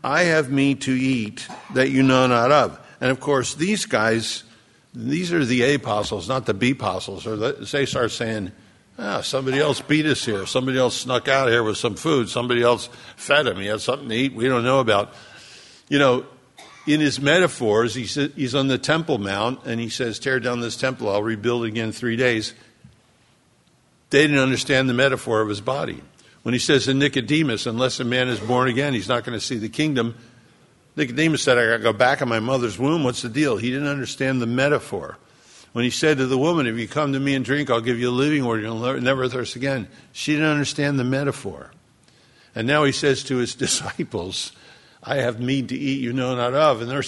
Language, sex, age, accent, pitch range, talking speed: English, male, 60-79, American, 120-140 Hz, 220 wpm